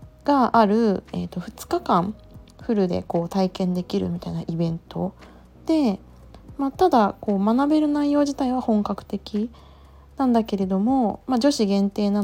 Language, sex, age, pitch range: Japanese, female, 20-39, 185-220 Hz